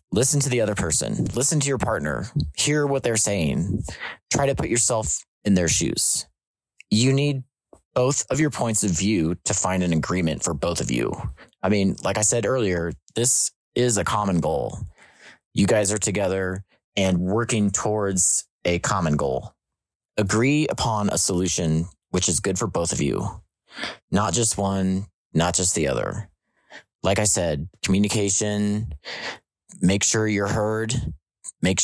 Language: English